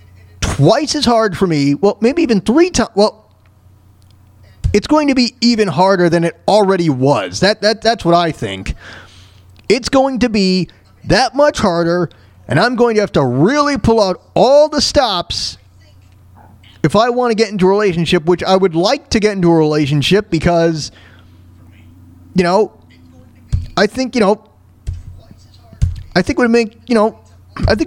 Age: 30-49